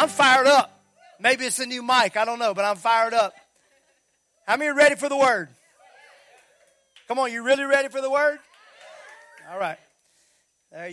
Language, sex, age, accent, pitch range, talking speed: English, male, 40-59, American, 190-245 Hz, 180 wpm